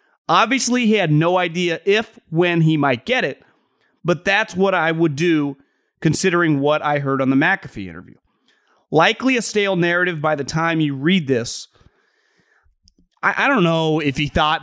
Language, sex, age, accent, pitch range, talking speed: English, male, 30-49, American, 135-175 Hz, 170 wpm